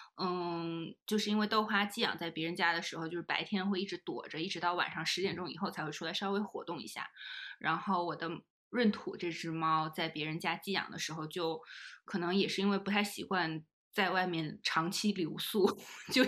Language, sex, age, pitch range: Chinese, female, 20-39, 170-205 Hz